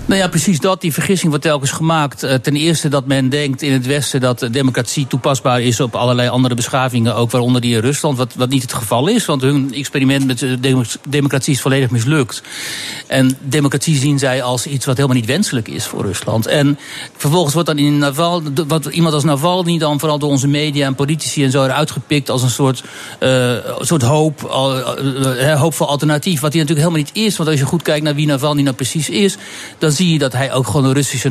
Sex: male